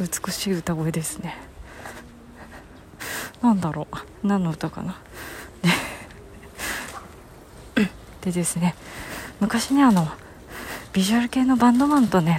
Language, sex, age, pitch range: Japanese, female, 40-59, 165-215 Hz